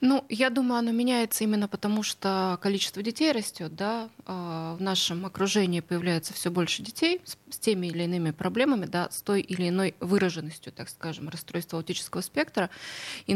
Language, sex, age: Russian, female, 20-39